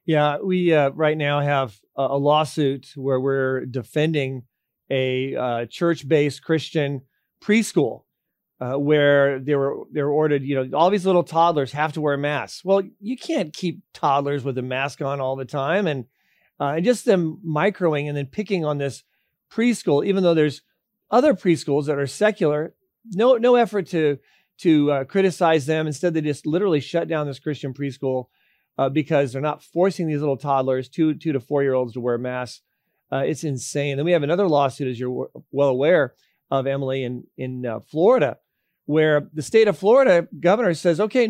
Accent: American